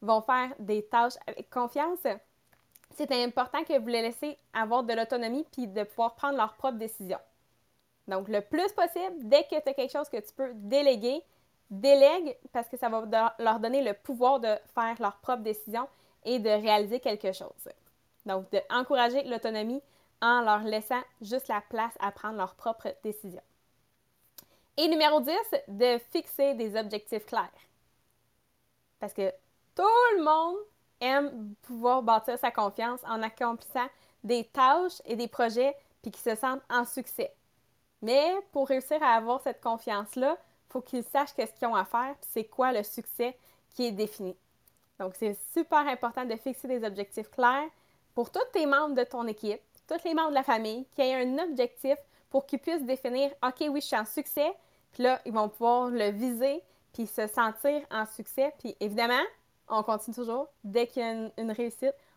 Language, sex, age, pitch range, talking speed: English, female, 20-39, 220-275 Hz, 180 wpm